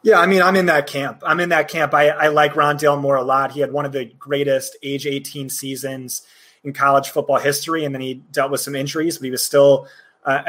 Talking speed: 245 wpm